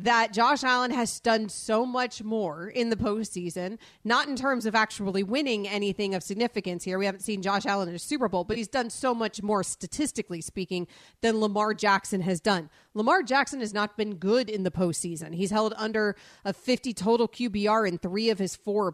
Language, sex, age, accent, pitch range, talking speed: English, female, 30-49, American, 185-230 Hz, 205 wpm